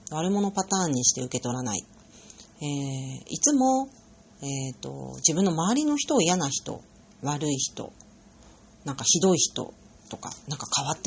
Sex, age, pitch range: female, 40-59, 145-200 Hz